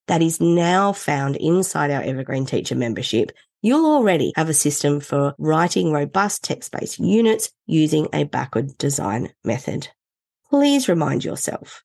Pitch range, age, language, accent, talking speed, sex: 145-205 Hz, 30-49, English, Australian, 140 wpm, female